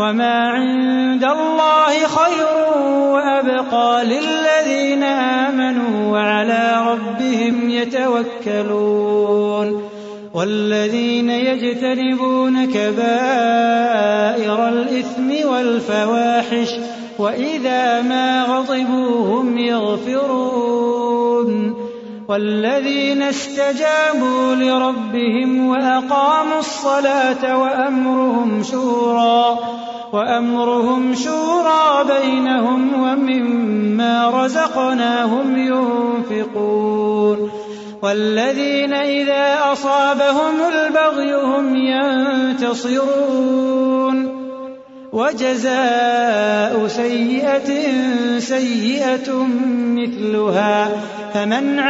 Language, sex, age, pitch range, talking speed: Arabic, male, 30-49, 235-265 Hz, 50 wpm